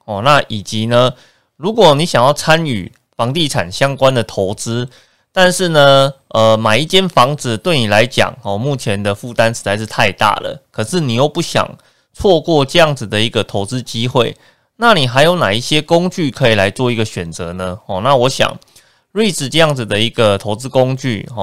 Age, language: 20-39, Chinese